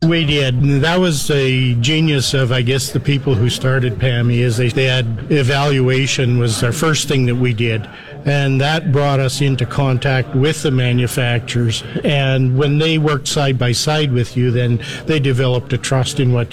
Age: 50-69